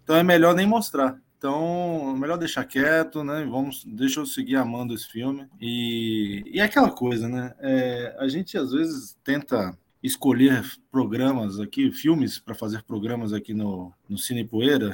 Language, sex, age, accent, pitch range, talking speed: Portuguese, male, 20-39, Brazilian, 125-175 Hz, 170 wpm